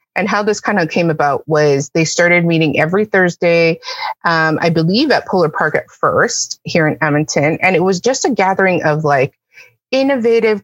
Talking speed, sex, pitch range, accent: 185 wpm, female, 155-205 Hz, American